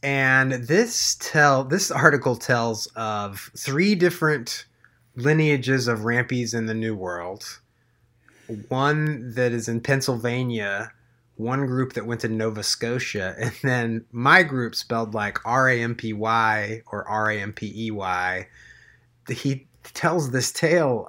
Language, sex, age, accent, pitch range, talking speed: English, male, 30-49, American, 115-145 Hz, 115 wpm